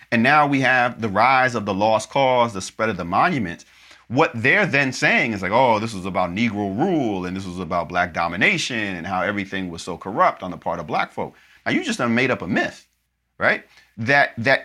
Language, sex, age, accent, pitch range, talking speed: English, male, 40-59, American, 105-145 Hz, 225 wpm